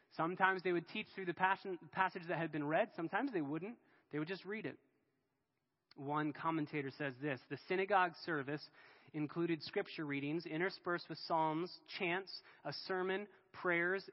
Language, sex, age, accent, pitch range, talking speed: English, male, 20-39, American, 145-175 Hz, 155 wpm